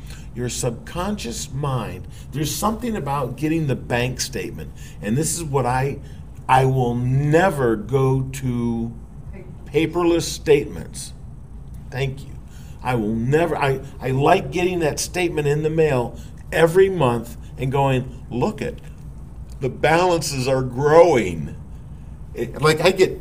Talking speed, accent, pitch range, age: 125 wpm, American, 125-160 Hz, 50-69